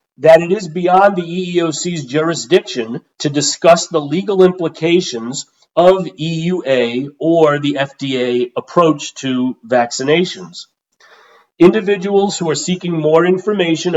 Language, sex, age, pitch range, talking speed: English, male, 40-59, 130-170 Hz, 110 wpm